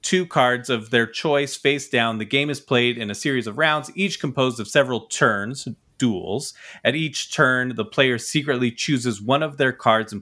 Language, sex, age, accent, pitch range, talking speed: English, male, 30-49, American, 110-140 Hz, 200 wpm